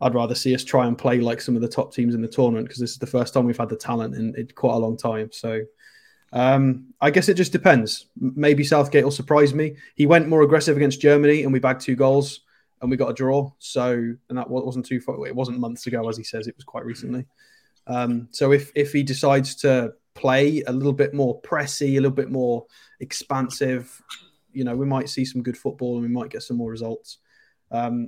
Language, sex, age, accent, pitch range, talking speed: English, male, 20-39, British, 120-140 Hz, 235 wpm